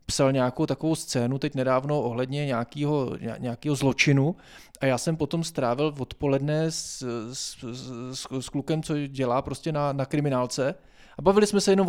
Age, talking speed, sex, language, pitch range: 20-39, 160 wpm, male, Czech, 145-175 Hz